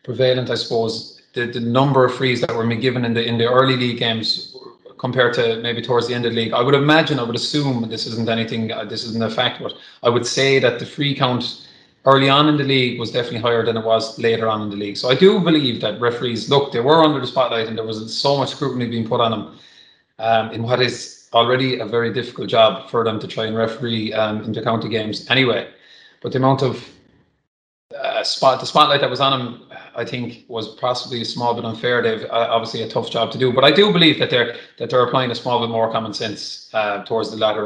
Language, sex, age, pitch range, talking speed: English, male, 30-49, 110-125 Hz, 245 wpm